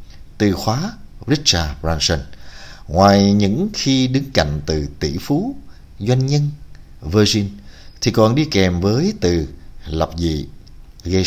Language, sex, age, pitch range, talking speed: Vietnamese, male, 60-79, 80-110 Hz, 130 wpm